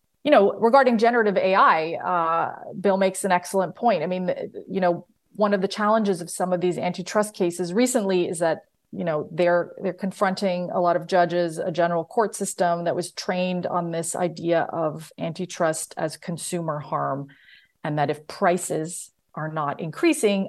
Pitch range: 165-195 Hz